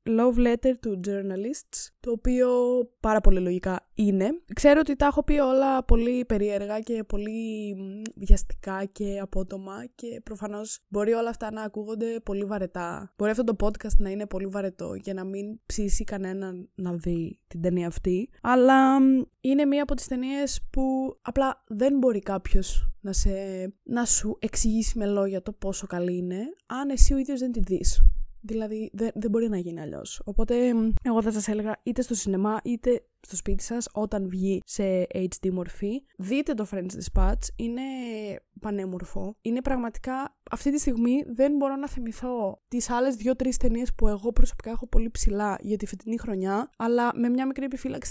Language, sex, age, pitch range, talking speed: Greek, female, 20-39, 195-250 Hz, 170 wpm